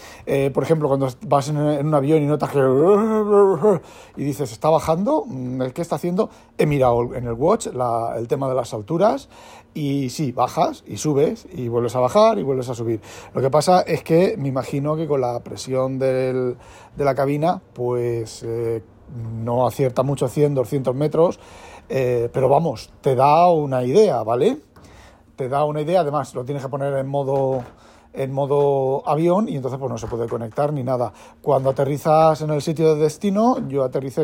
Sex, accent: male, Spanish